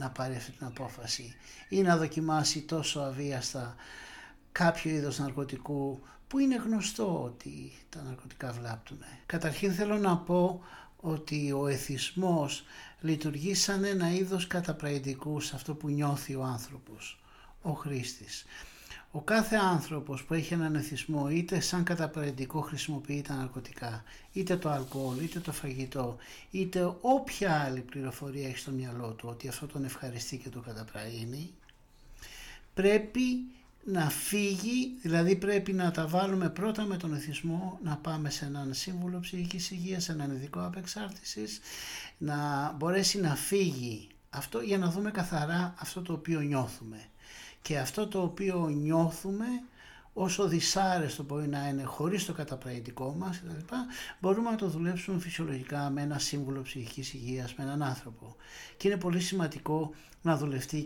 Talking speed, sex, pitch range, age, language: 145 wpm, male, 135-180 Hz, 60-79, Greek